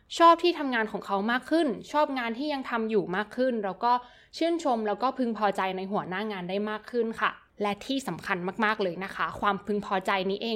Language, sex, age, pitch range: Thai, female, 20-39, 195-250 Hz